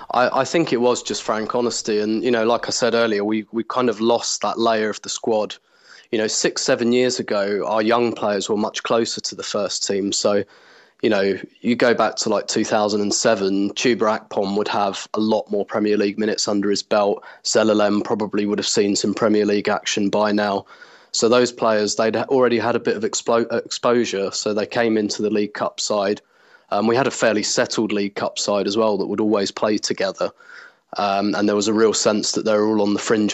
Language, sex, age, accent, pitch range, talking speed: English, male, 20-39, British, 105-115 Hz, 220 wpm